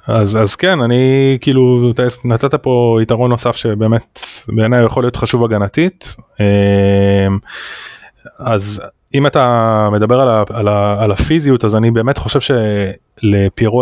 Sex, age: male, 20-39